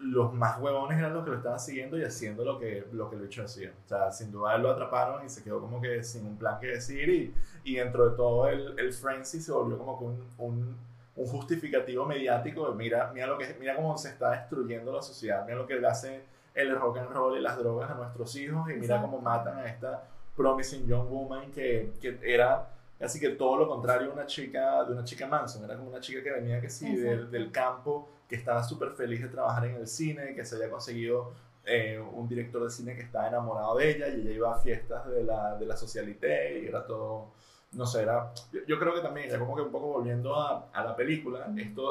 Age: 20-39